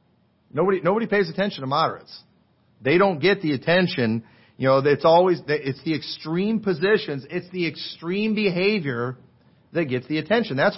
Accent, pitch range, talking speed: American, 135-195 Hz, 155 wpm